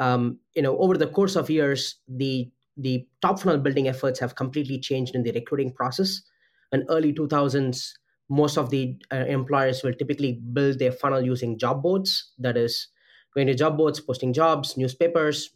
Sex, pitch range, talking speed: male, 130-160 Hz, 175 wpm